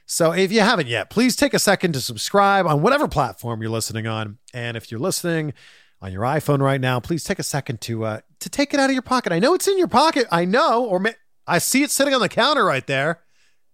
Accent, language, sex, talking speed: American, English, male, 255 wpm